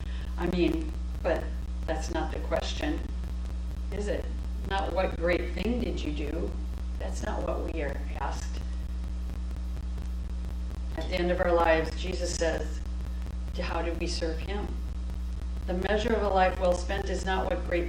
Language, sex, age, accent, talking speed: English, female, 50-69, American, 155 wpm